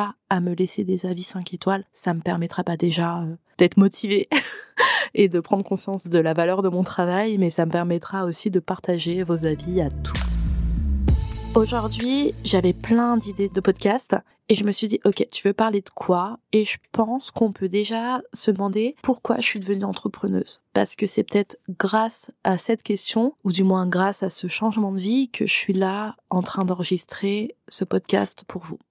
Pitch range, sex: 175-205 Hz, female